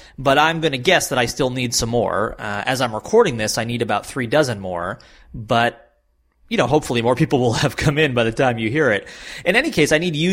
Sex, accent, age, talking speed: male, American, 30-49, 255 wpm